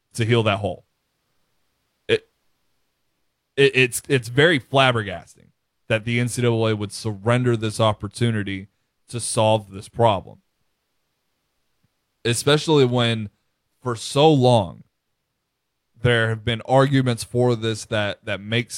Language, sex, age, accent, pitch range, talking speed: English, male, 20-39, American, 110-140 Hz, 110 wpm